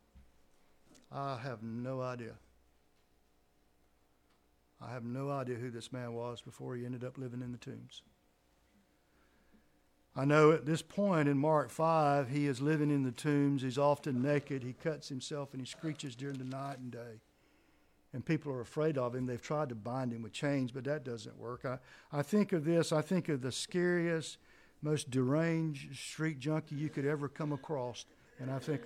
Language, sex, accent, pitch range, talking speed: English, male, American, 115-150 Hz, 180 wpm